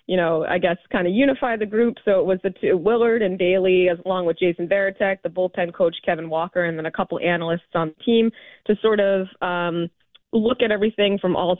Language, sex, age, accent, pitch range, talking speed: English, female, 20-39, American, 175-210 Hz, 230 wpm